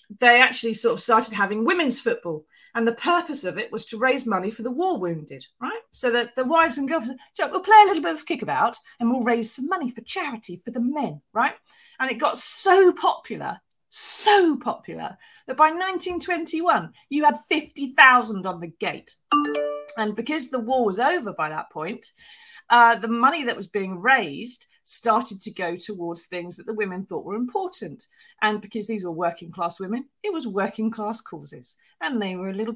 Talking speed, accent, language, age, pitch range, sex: 195 wpm, British, English, 40-59, 195-270 Hz, female